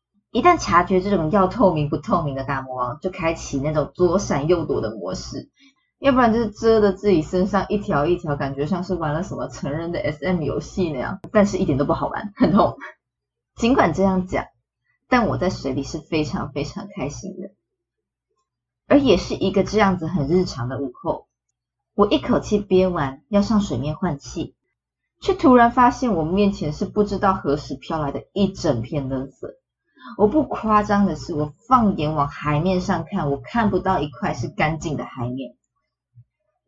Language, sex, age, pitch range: Chinese, female, 20-39, 145-205 Hz